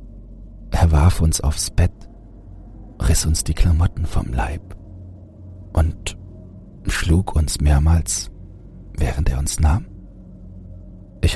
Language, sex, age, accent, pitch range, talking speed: German, male, 40-59, German, 85-95 Hz, 105 wpm